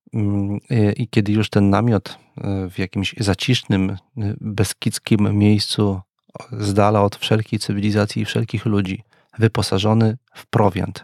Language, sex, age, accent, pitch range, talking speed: Polish, male, 40-59, native, 100-115 Hz, 110 wpm